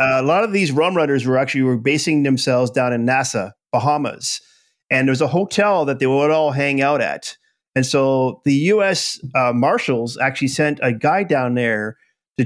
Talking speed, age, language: 195 wpm, 40-59, English